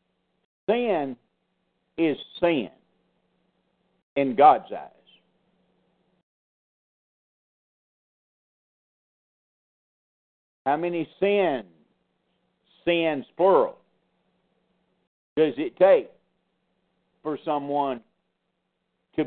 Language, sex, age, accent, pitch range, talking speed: English, male, 50-69, American, 110-145 Hz, 55 wpm